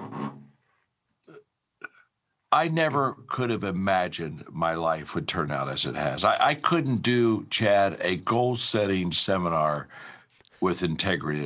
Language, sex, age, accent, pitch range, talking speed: English, male, 60-79, American, 100-130 Hz, 125 wpm